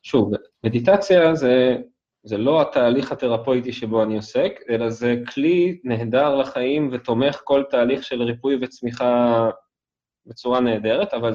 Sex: male